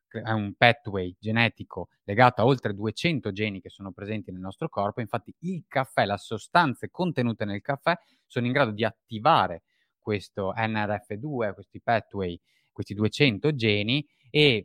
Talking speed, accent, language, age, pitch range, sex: 150 wpm, native, Italian, 30-49, 95-130 Hz, male